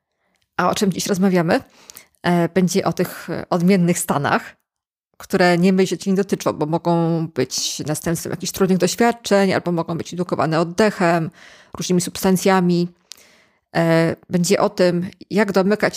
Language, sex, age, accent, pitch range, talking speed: Polish, female, 20-39, native, 175-205 Hz, 135 wpm